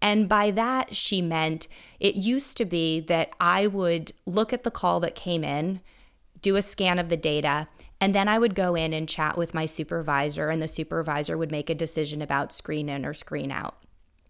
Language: English